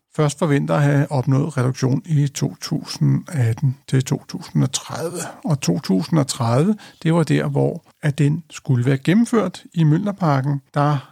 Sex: male